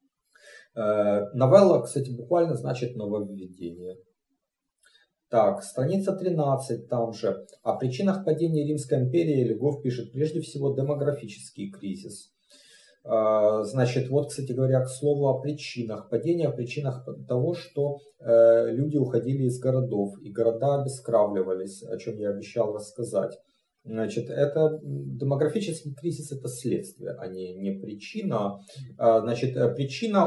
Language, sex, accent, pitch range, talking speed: Russian, male, native, 110-145 Hz, 115 wpm